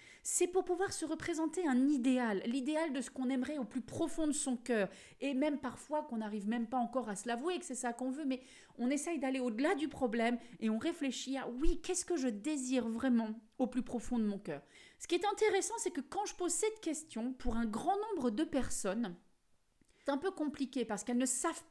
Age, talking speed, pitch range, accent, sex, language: 30-49, 230 wpm, 225-290 Hz, French, female, French